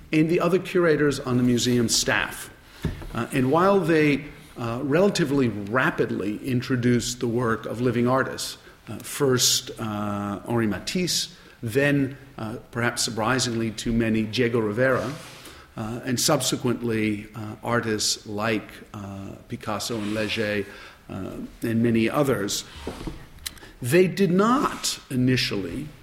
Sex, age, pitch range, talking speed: male, 50-69, 115-145 Hz, 120 wpm